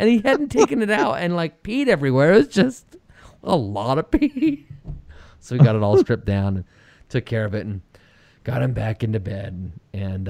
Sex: male